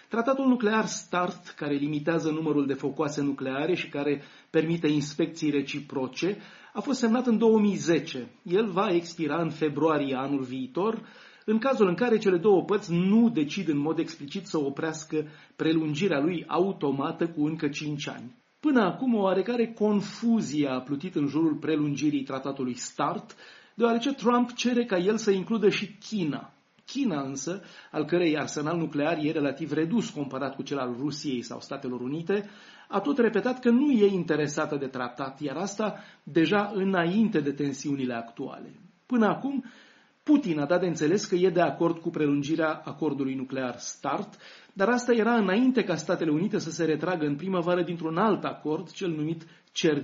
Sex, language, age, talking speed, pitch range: male, Romanian, 30-49, 160 wpm, 145-200 Hz